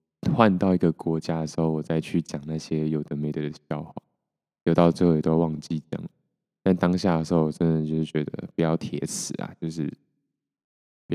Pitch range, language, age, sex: 80-85 Hz, Chinese, 20-39, male